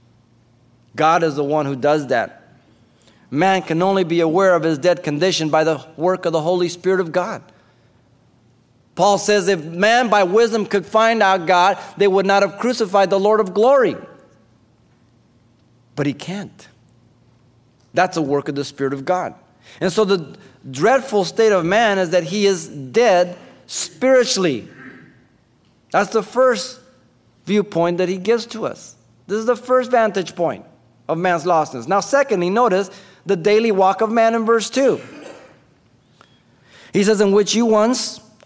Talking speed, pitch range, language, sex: 160 wpm, 145-200 Hz, English, male